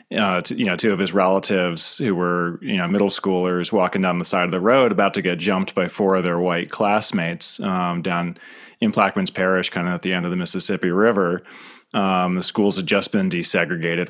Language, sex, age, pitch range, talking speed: English, male, 30-49, 90-105 Hz, 215 wpm